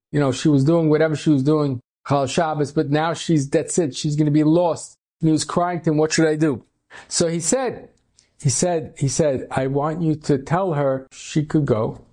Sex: male